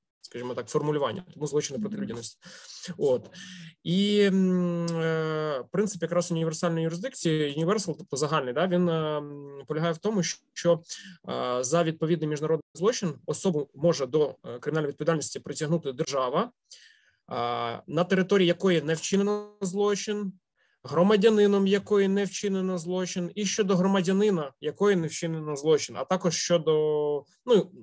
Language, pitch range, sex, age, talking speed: Ukrainian, 145-185 Hz, male, 20-39, 130 wpm